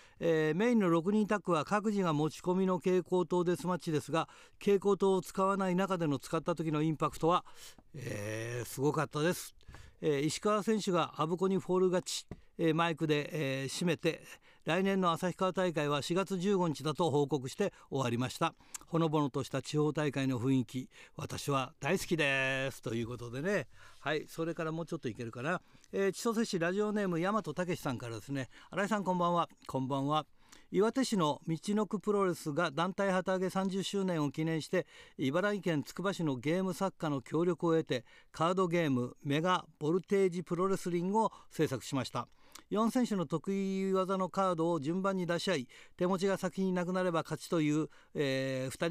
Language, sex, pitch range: Japanese, male, 145-190 Hz